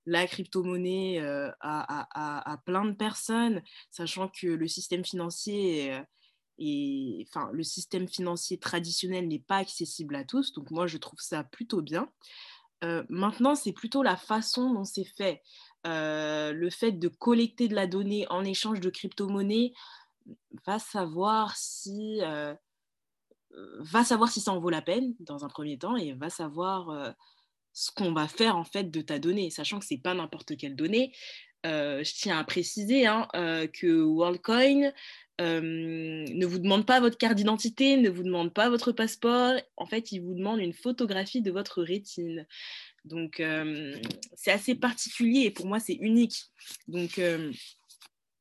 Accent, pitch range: French, 170-225 Hz